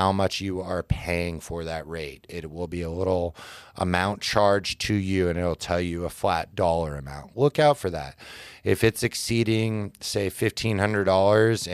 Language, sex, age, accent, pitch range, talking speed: English, male, 30-49, American, 90-110 Hz, 170 wpm